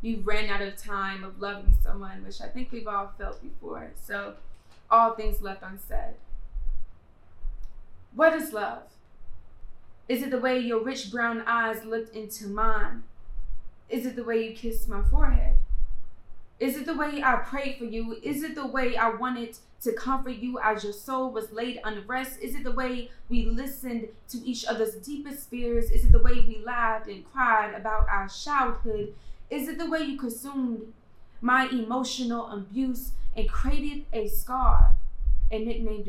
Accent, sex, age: American, female, 20-39